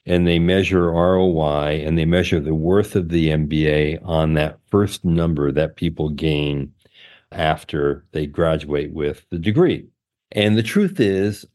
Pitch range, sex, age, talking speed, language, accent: 80-105 Hz, male, 50-69, 150 wpm, English, American